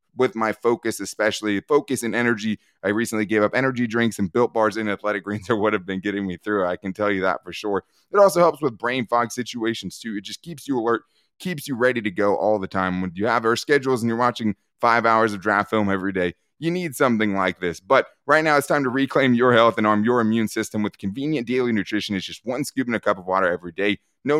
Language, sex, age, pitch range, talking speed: English, male, 20-39, 105-130 Hz, 255 wpm